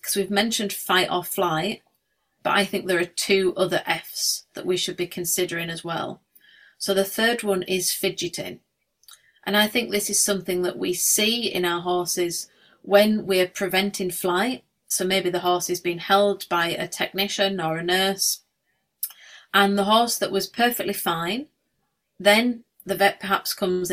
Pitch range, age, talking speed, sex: 180-205 Hz, 30-49, 175 wpm, female